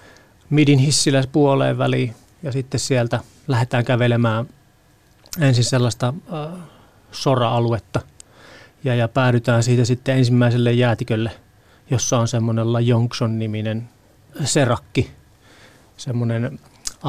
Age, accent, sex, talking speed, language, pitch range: 30-49, native, male, 95 wpm, Finnish, 115-130 Hz